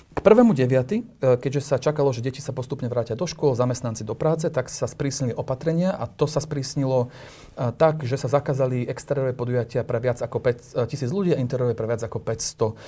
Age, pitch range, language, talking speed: 40-59, 120-150 Hz, Slovak, 190 wpm